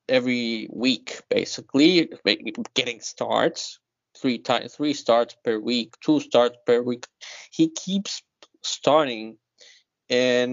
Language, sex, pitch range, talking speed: English, male, 120-160 Hz, 110 wpm